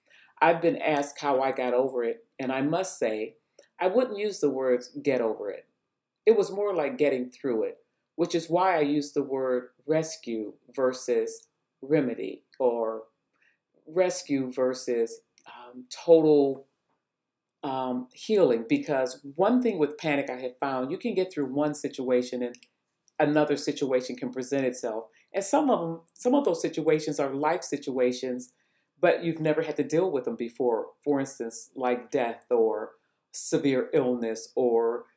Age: 40-59